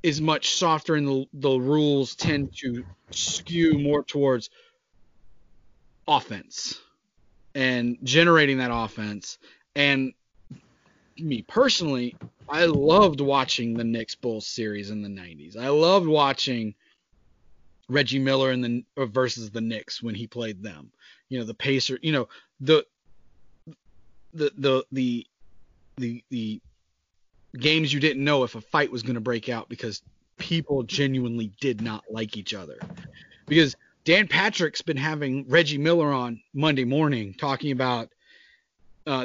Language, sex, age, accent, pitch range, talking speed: English, male, 30-49, American, 115-155 Hz, 135 wpm